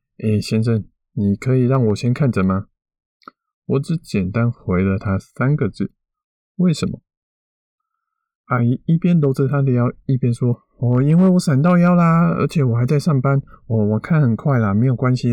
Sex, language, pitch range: male, Chinese, 105-145 Hz